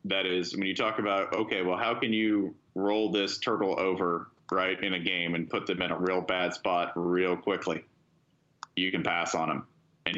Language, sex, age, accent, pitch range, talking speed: English, male, 30-49, American, 100-155 Hz, 205 wpm